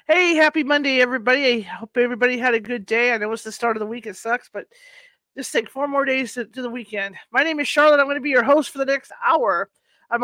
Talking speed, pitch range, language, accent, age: 270 wpm, 225-285 Hz, English, American, 40-59